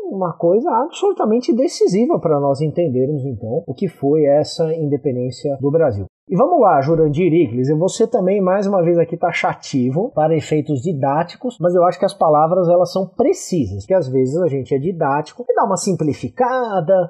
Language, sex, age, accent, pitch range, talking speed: Portuguese, male, 30-49, Brazilian, 140-195 Hz, 180 wpm